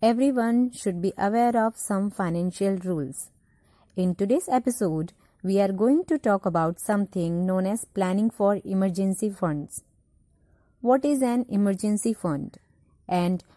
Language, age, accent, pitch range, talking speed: Hindi, 30-49, native, 180-240 Hz, 135 wpm